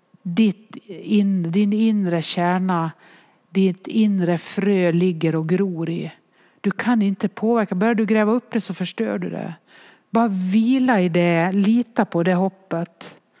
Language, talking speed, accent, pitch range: English, 140 wpm, Swedish, 175-220 Hz